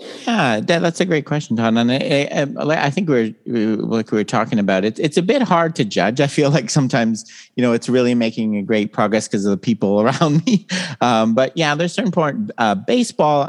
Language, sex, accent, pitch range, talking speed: English, male, American, 100-140 Hz, 230 wpm